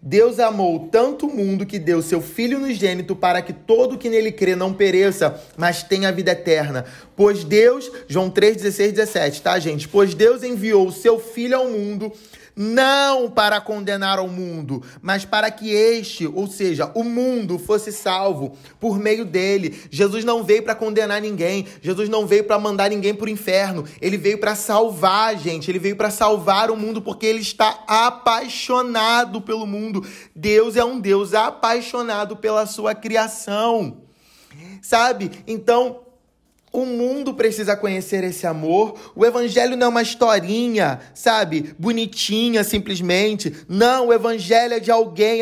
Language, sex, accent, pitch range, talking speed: Portuguese, male, Brazilian, 195-230 Hz, 160 wpm